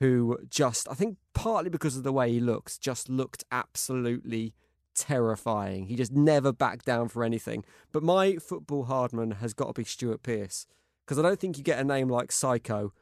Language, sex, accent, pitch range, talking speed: English, male, British, 115-150 Hz, 195 wpm